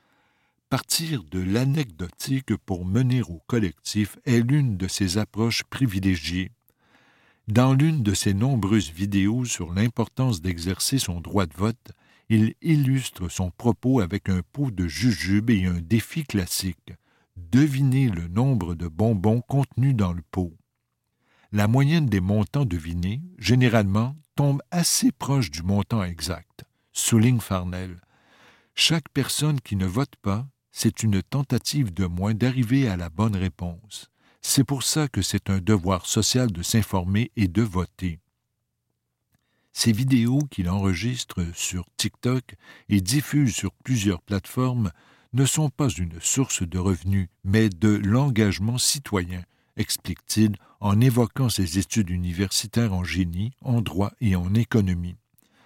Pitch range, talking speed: 95-125 Hz, 135 wpm